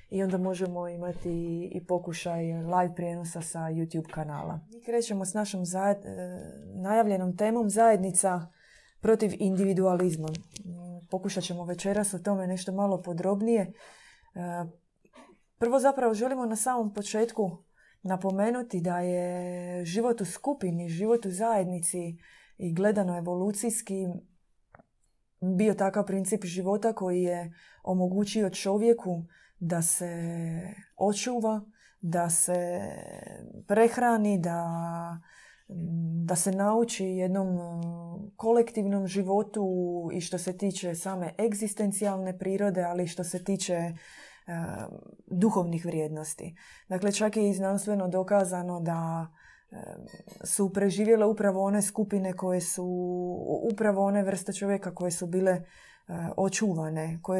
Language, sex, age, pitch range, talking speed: Croatian, female, 20-39, 175-205 Hz, 110 wpm